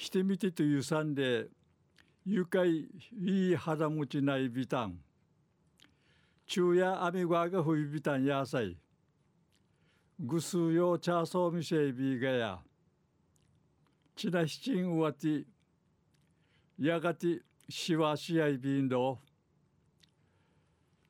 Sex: male